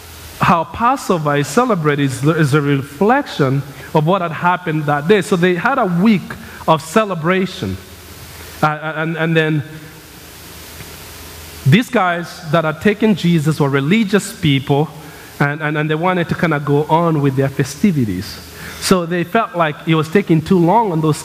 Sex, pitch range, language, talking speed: male, 130-180 Hz, English, 160 wpm